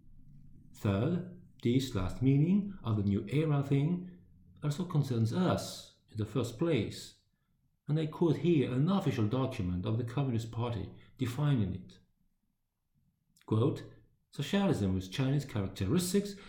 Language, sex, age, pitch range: English, male, 50-69, 105-155 Hz